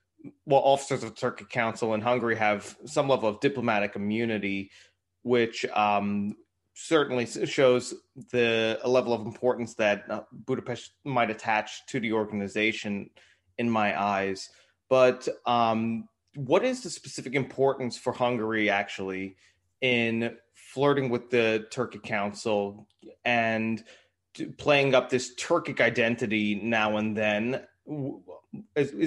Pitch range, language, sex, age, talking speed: 105-130 Hz, Turkish, male, 20-39, 125 wpm